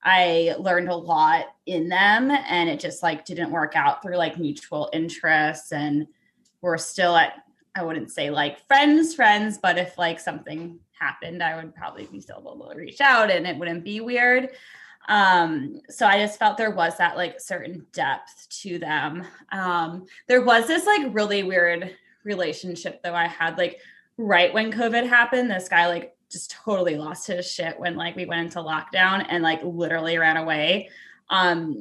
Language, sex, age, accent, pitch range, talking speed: English, female, 20-39, American, 170-220 Hz, 180 wpm